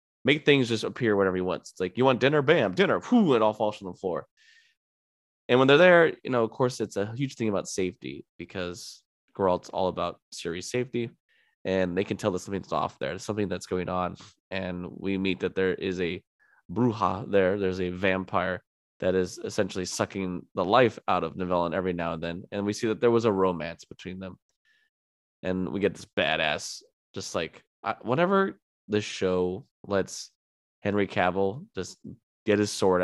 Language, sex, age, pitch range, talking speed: English, male, 20-39, 90-115 Hz, 195 wpm